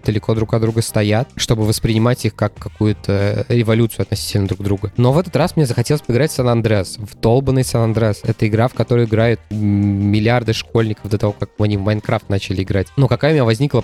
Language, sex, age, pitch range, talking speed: Russian, male, 20-39, 105-130 Hz, 210 wpm